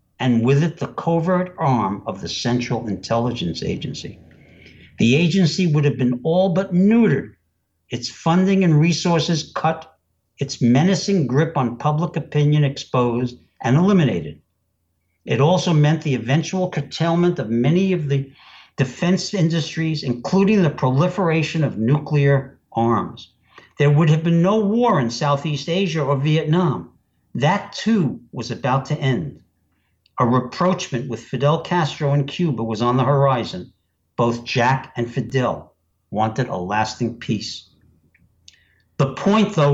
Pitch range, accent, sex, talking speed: 120-180 Hz, American, male, 135 wpm